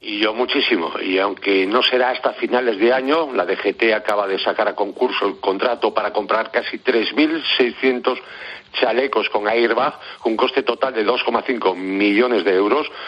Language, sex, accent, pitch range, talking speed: Spanish, male, Spanish, 125-170 Hz, 160 wpm